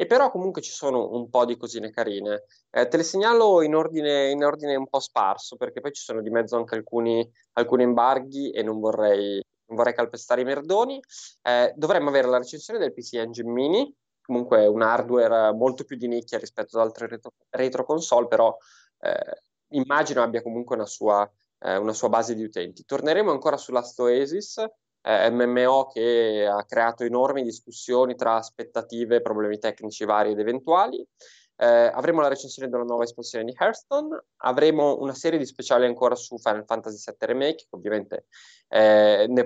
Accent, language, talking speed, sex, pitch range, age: native, Italian, 170 wpm, male, 115-145 Hz, 20-39